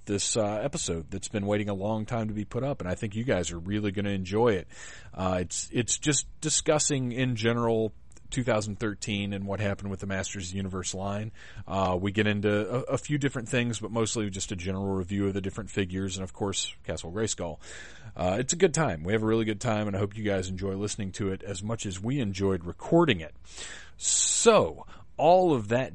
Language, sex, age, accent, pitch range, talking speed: English, male, 30-49, American, 95-115 Hz, 225 wpm